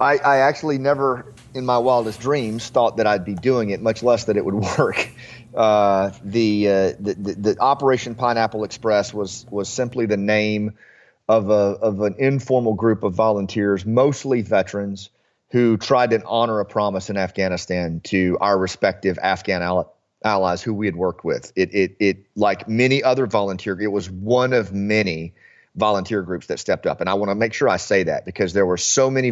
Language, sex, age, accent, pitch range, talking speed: English, male, 30-49, American, 100-115 Hz, 190 wpm